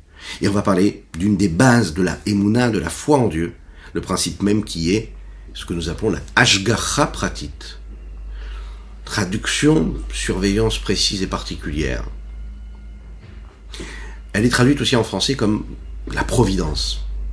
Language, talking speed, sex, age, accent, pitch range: French, 140 wpm, male, 50-69, French, 75-115 Hz